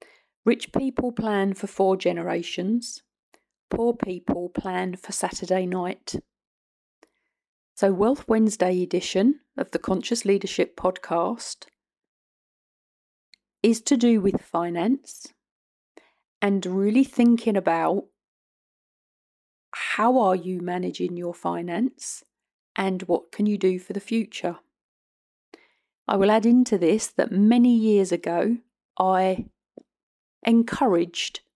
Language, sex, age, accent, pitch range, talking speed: English, female, 40-59, British, 180-215 Hz, 105 wpm